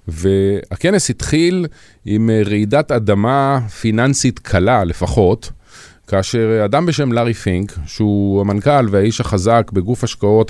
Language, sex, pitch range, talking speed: Hebrew, male, 95-120 Hz, 110 wpm